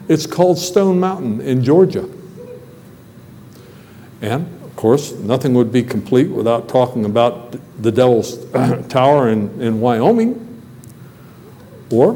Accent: American